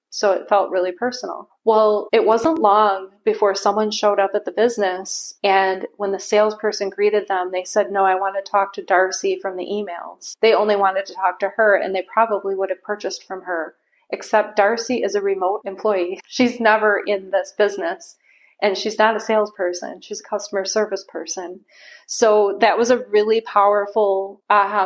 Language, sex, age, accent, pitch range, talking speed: English, female, 30-49, American, 190-215 Hz, 185 wpm